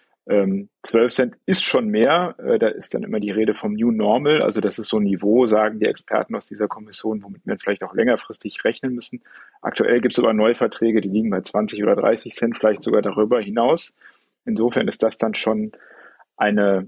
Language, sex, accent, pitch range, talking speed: German, male, German, 110-140 Hz, 195 wpm